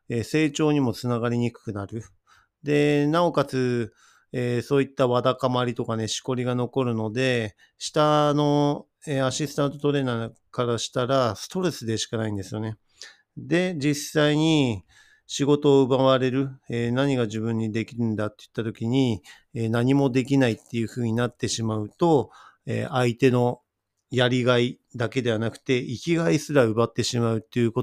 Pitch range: 115-140 Hz